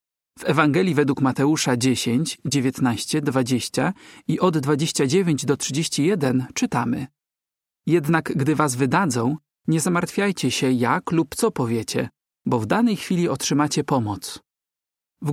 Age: 40-59